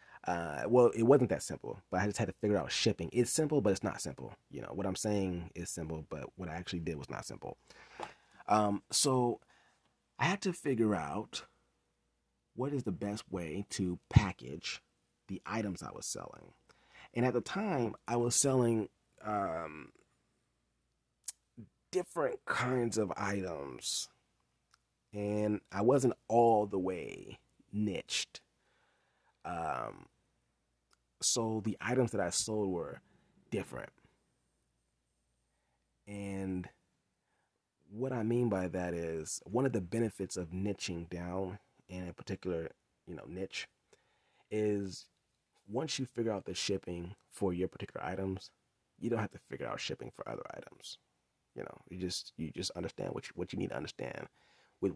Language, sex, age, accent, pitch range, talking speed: English, male, 30-49, American, 90-115 Hz, 150 wpm